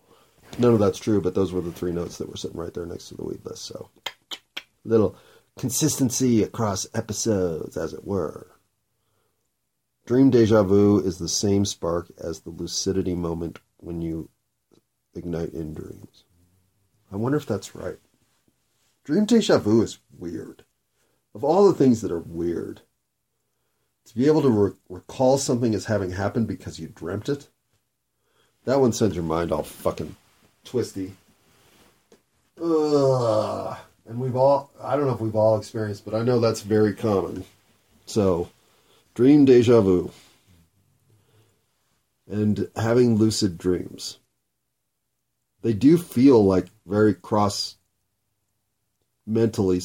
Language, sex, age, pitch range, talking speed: English, male, 40-59, 95-115 Hz, 135 wpm